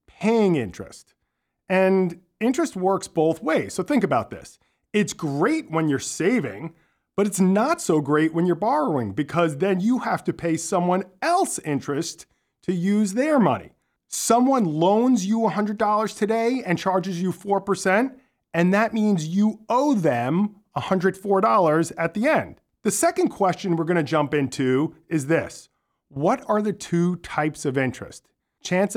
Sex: male